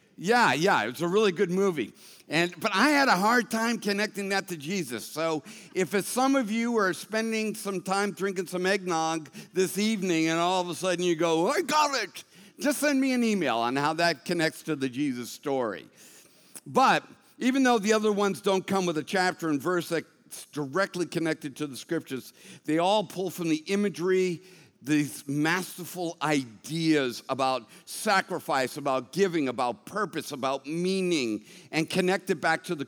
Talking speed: 180 wpm